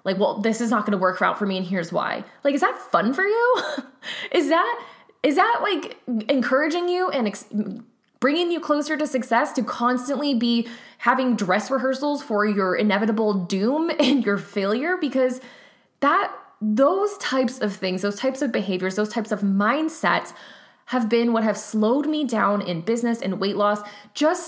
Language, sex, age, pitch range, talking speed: English, female, 20-39, 195-265 Hz, 180 wpm